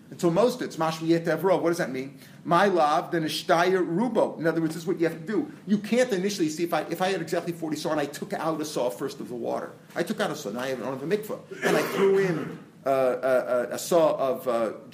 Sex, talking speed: male, 275 wpm